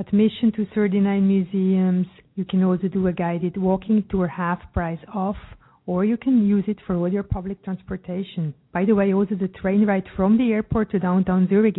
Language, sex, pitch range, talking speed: English, female, 180-225 Hz, 195 wpm